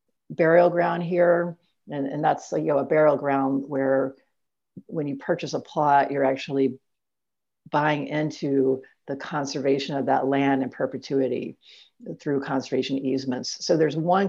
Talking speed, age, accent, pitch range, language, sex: 145 wpm, 50-69, American, 135-160 Hz, English, female